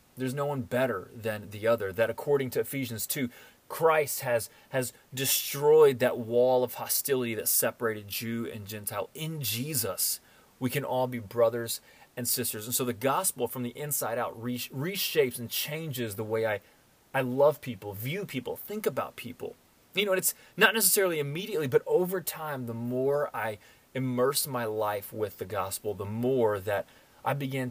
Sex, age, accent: male, 30-49, American